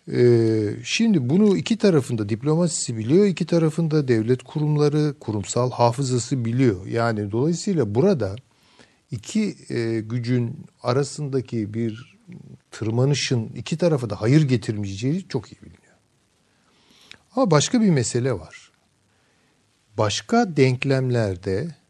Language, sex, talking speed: Turkish, male, 100 wpm